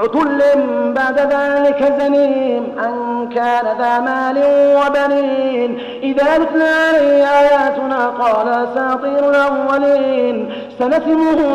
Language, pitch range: Arabic, 260-285 Hz